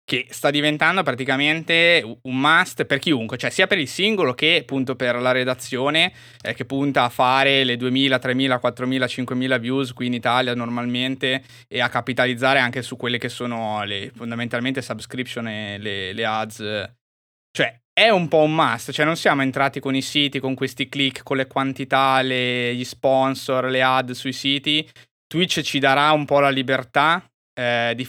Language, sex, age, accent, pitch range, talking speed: Italian, male, 20-39, native, 120-140 Hz, 175 wpm